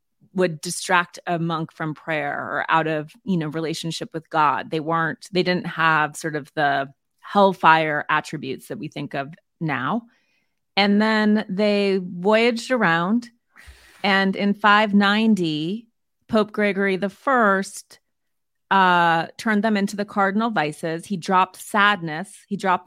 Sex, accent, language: female, American, English